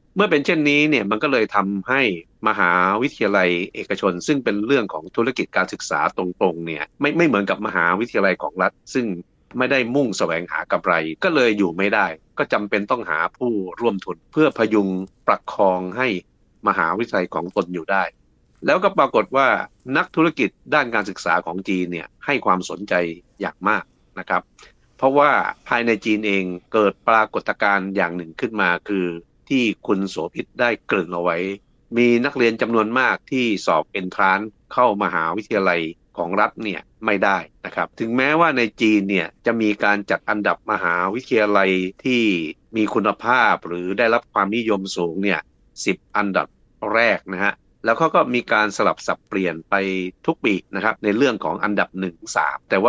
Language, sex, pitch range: Thai, male, 90-110 Hz